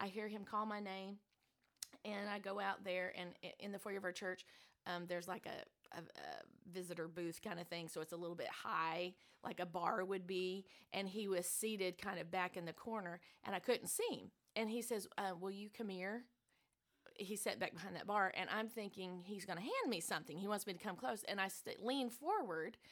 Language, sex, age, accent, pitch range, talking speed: English, female, 30-49, American, 185-225 Hz, 230 wpm